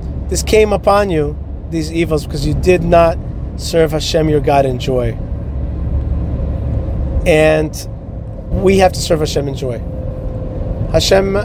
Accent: American